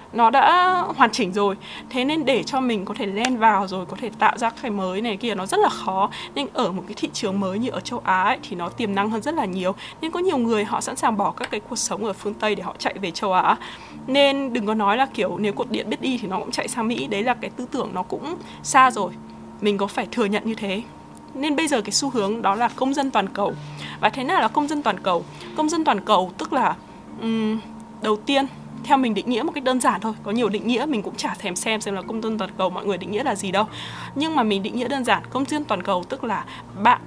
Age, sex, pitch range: 20-39, female, 200-260 Hz